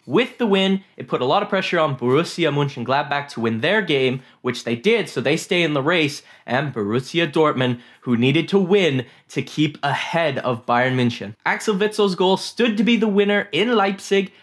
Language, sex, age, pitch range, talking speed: English, male, 10-29, 125-195 Hz, 200 wpm